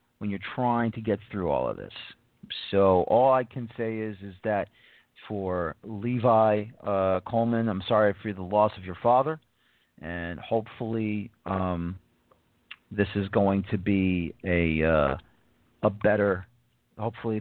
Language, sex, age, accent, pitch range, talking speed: English, male, 40-59, American, 95-115 Hz, 145 wpm